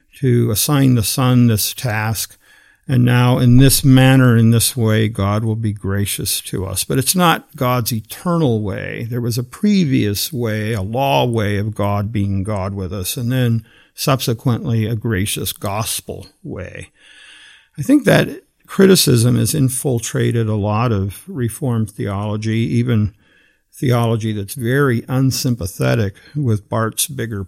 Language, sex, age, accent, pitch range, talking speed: English, male, 50-69, American, 110-135 Hz, 145 wpm